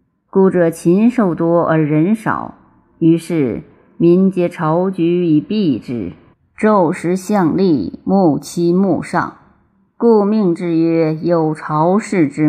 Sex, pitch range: female, 155-195 Hz